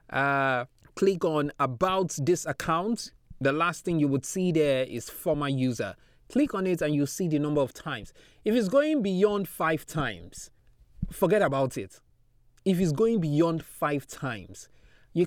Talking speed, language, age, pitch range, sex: 165 wpm, English, 20-39, 125-170 Hz, male